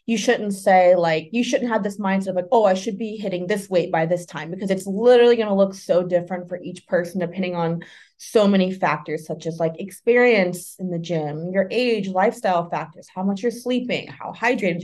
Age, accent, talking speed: 20-39, American, 220 wpm